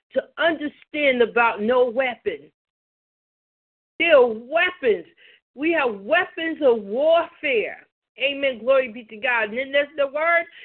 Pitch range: 250-335 Hz